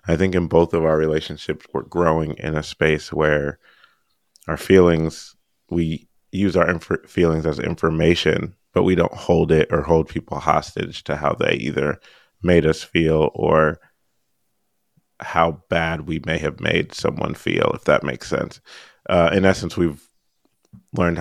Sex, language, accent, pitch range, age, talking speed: male, English, American, 80-90 Hz, 30-49, 160 wpm